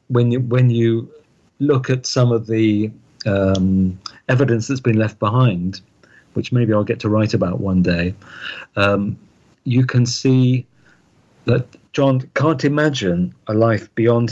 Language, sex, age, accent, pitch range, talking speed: English, male, 50-69, British, 105-130 Hz, 145 wpm